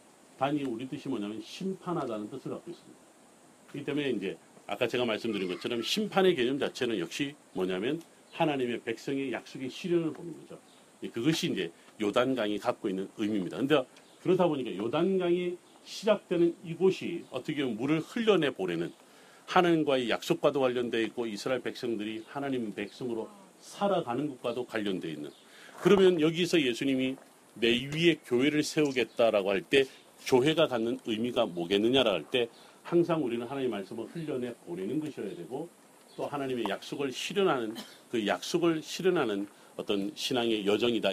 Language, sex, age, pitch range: Korean, male, 40-59, 115-165 Hz